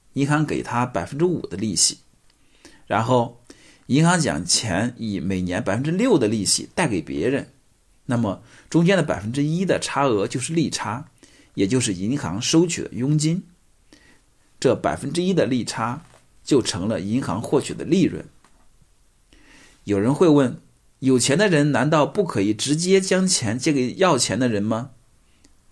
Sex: male